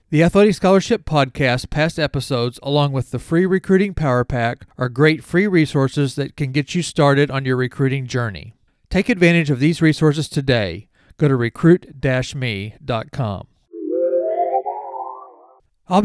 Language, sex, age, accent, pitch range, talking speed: English, male, 40-59, American, 140-180 Hz, 135 wpm